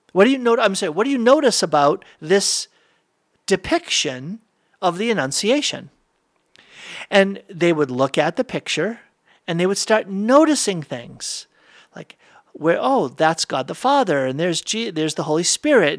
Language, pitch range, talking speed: English, 160-260 Hz, 160 wpm